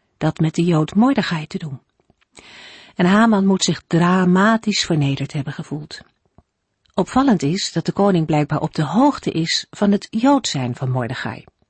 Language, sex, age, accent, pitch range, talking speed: Dutch, female, 50-69, Dutch, 145-195 Hz, 155 wpm